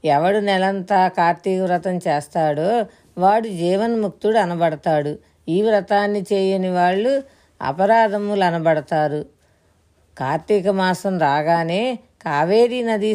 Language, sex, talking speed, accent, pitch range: Telugu, female, 85 wpm, native, 165-205 Hz